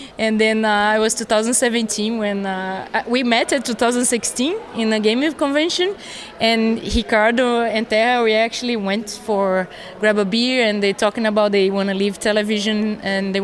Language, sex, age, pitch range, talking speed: English, female, 20-39, 210-245 Hz, 170 wpm